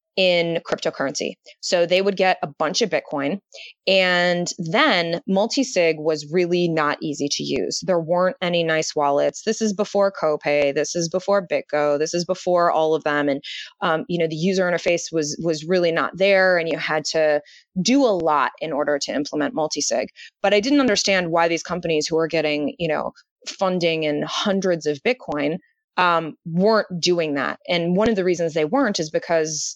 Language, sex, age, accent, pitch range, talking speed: English, female, 20-39, American, 155-185 Hz, 185 wpm